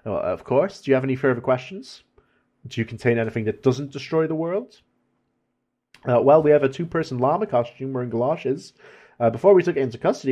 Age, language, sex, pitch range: 30-49, English, male, 120-145 Hz